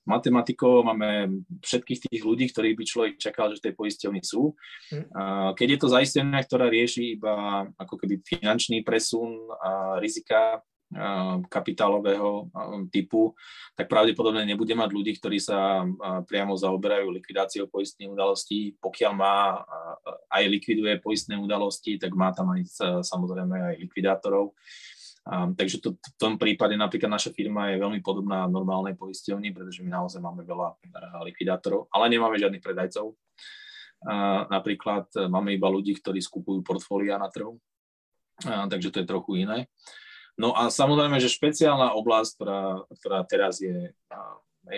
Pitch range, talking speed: 95-115 Hz, 140 wpm